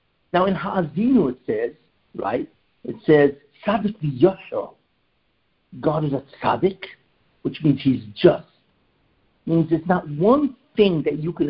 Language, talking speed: English, 130 wpm